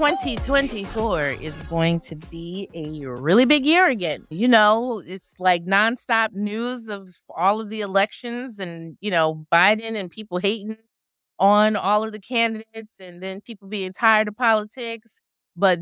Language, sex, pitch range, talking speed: English, female, 175-230 Hz, 155 wpm